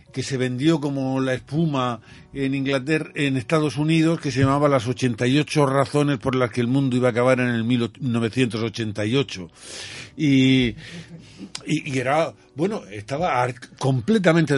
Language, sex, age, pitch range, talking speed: Spanish, male, 50-69, 110-145 Hz, 150 wpm